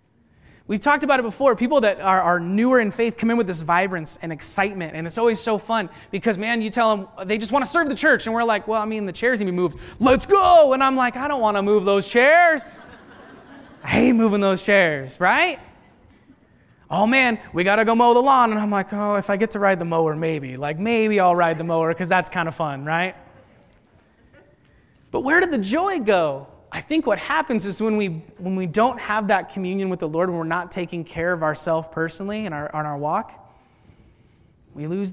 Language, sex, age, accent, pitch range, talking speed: English, male, 30-49, American, 170-225 Hz, 230 wpm